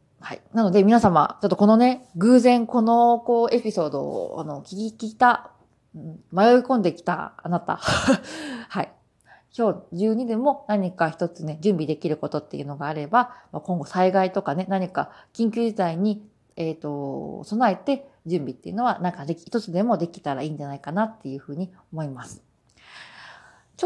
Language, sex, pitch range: Japanese, female, 170-235 Hz